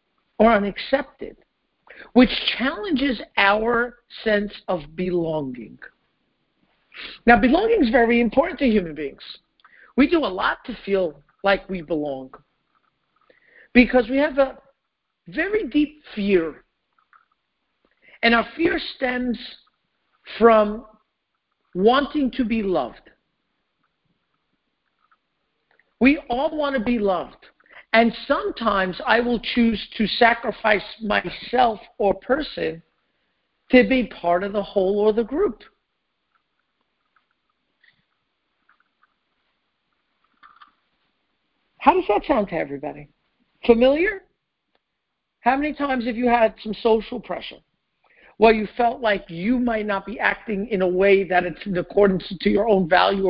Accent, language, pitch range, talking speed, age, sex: American, English, 195-260 Hz, 115 wpm, 50-69, male